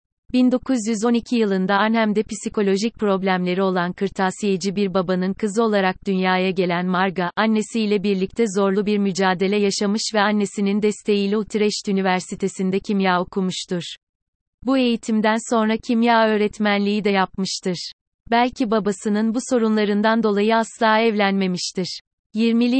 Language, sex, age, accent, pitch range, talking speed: Turkish, female, 30-49, native, 190-225 Hz, 110 wpm